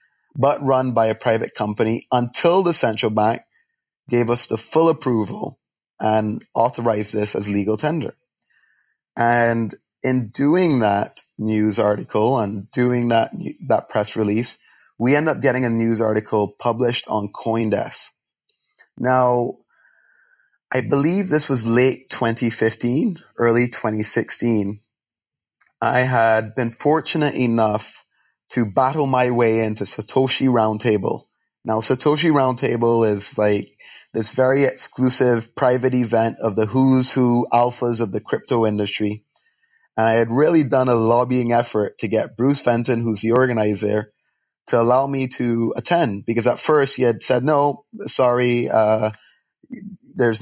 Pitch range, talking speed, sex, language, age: 110-135 Hz, 135 wpm, male, English, 30-49